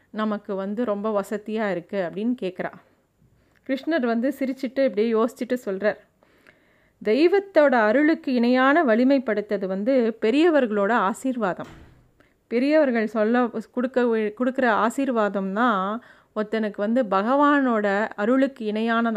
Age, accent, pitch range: 30-49, native, 205-250 Hz